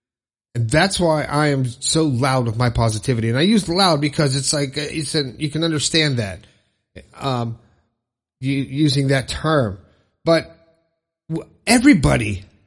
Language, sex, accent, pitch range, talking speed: English, male, American, 120-170 Hz, 140 wpm